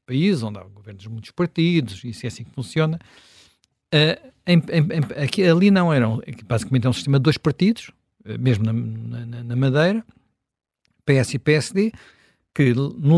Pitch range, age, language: 115-140 Hz, 50-69, Portuguese